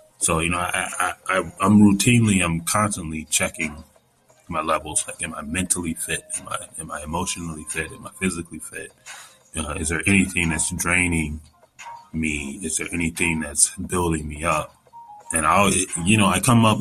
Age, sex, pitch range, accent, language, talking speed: 20-39, male, 80-105 Hz, American, English, 180 wpm